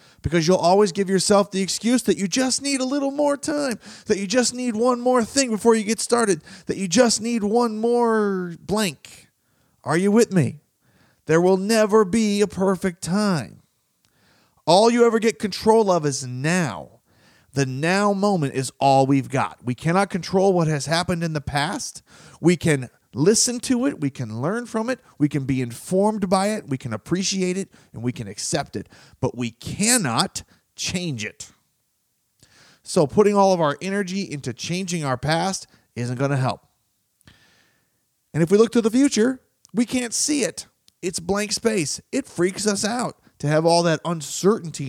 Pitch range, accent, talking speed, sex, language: 135-205 Hz, American, 180 wpm, male, English